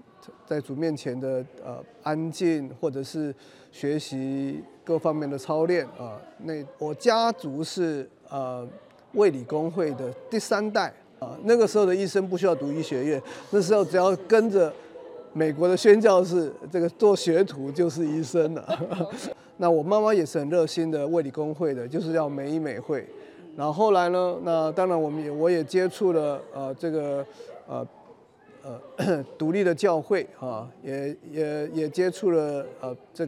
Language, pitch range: Chinese, 145-185 Hz